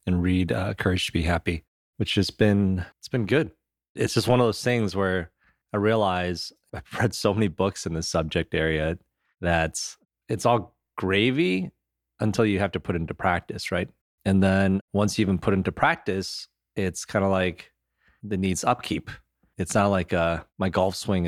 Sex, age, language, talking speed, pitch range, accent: male, 30-49, English, 185 wpm, 85-105 Hz, American